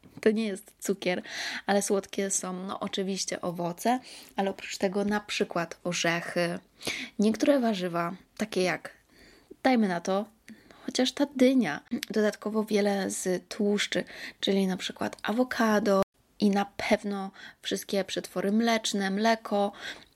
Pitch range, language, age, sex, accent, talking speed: 185-215 Hz, Polish, 20-39, female, native, 120 wpm